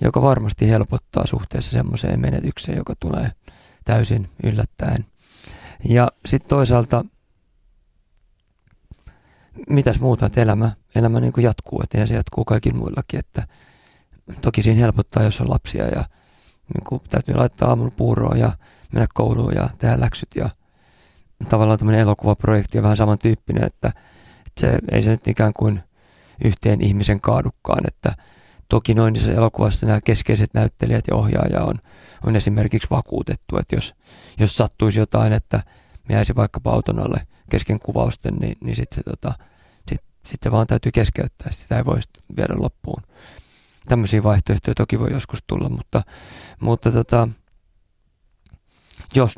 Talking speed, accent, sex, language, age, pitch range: 140 wpm, native, male, Finnish, 30-49, 100-120 Hz